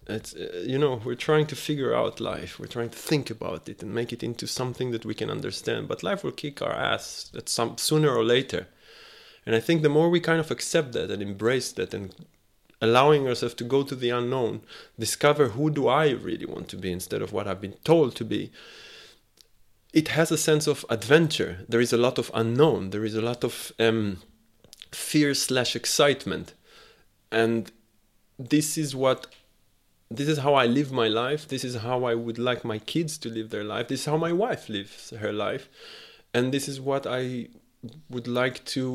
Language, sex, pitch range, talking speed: English, male, 110-140 Hz, 205 wpm